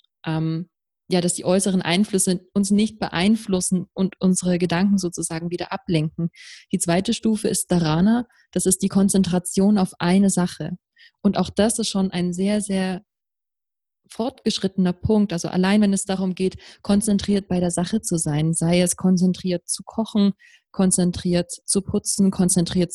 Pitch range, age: 175-200 Hz, 20-39